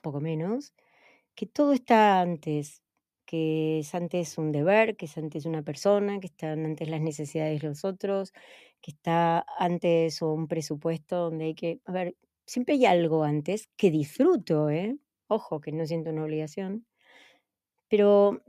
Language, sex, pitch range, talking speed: Spanish, female, 165-230 Hz, 155 wpm